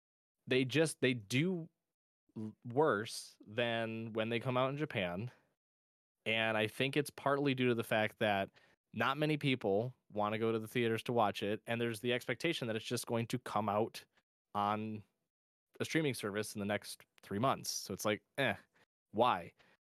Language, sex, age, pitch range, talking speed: English, male, 20-39, 105-130 Hz, 180 wpm